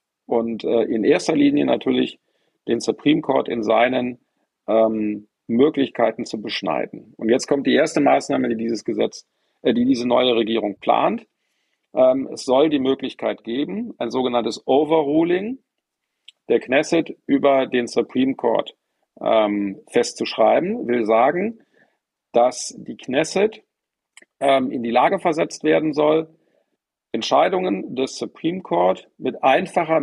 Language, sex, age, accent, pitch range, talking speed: German, male, 40-59, German, 115-150 Hz, 125 wpm